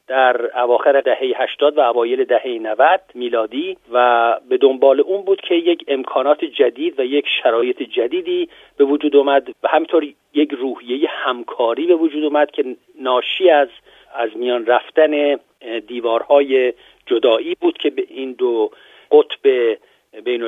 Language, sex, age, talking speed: Persian, male, 40-59, 140 wpm